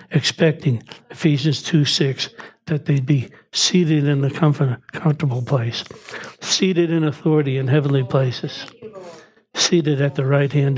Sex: male